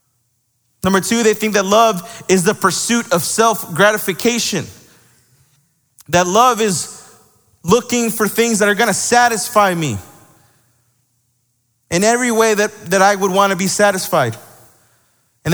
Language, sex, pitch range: English, male, 120-185 Hz